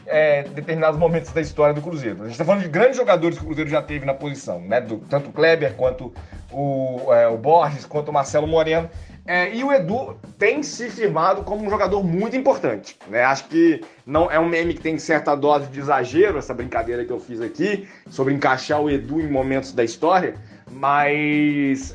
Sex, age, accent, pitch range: male, 20-39, Brazilian, 150-200 Hz